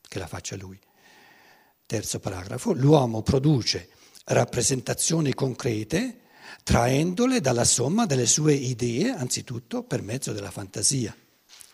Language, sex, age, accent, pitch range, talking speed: Italian, male, 60-79, native, 115-165 Hz, 105 wpm